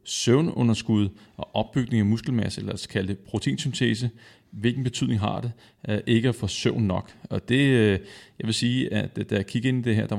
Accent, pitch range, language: native, 105-125 Hz, Danish